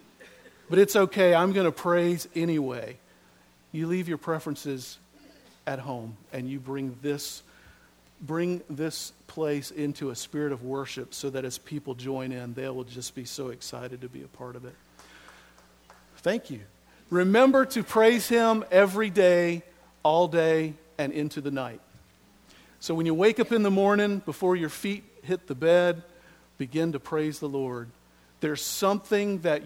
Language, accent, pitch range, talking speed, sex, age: English, American, 125-165 Hz, 160 wpm, male, 50-69